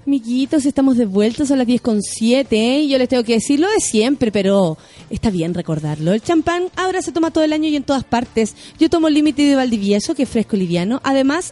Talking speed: 230 wpm